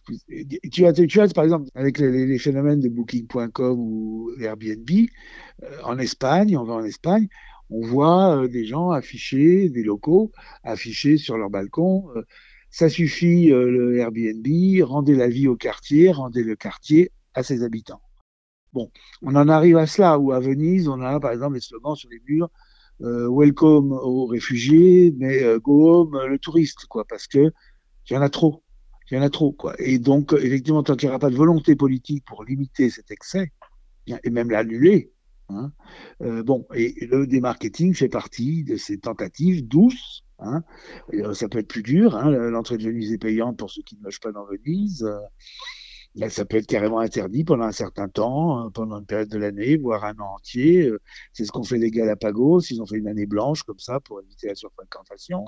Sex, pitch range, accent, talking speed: male, 115-155 Hz, French, 195 wpm